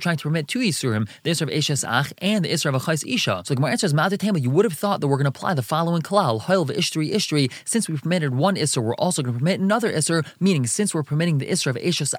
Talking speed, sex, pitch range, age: 280 wpm, male, 140-185 Hz, 20-39